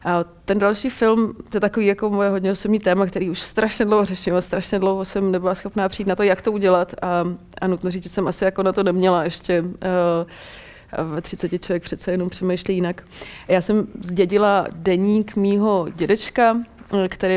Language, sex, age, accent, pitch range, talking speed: Czech, female, 30-49, native, 170-190 Hz, 190 wpm